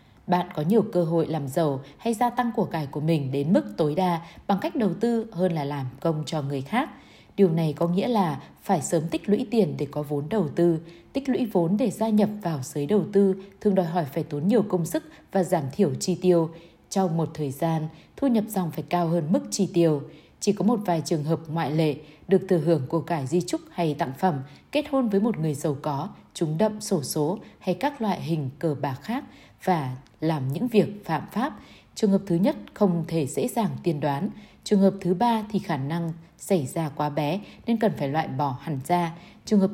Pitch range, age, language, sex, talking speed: 155-205 Hz, 20-39, Vietnamese, female, 230 wpm